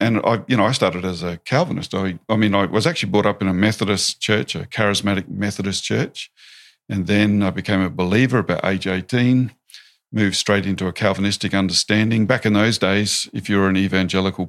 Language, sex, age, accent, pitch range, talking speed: English, male, 50-69, Australian, 95-110 Hz, 200 wpm